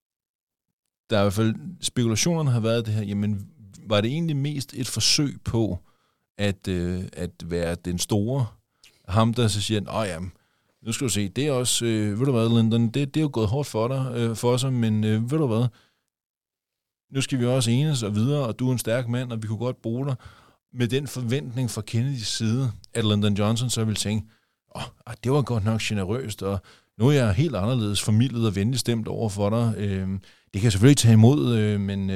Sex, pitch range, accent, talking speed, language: male, 100-125 Hz, native, 215 wpm, Danish